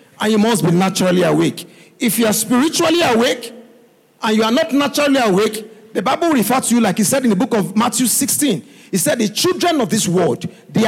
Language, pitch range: English, 200-285 Hz